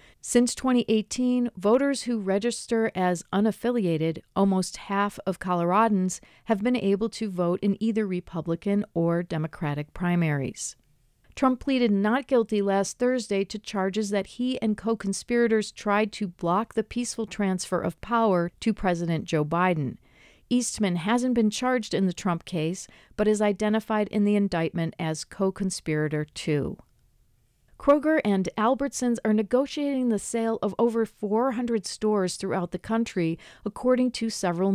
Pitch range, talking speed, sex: 180-225 Hz, 140 wpm, female